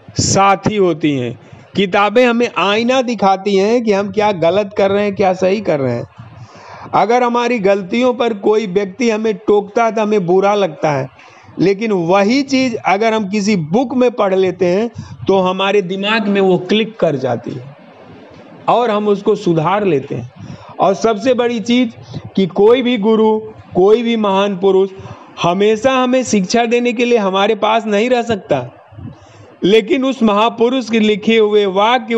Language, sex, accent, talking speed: Hindi, male, native, 170 wpm